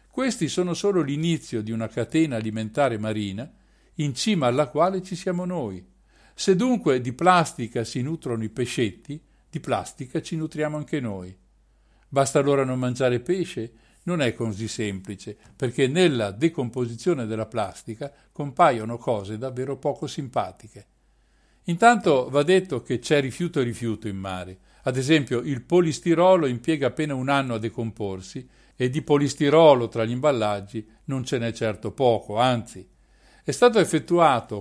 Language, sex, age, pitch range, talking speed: Italian, male, 50-69, 115-160 Hz, 145 wpm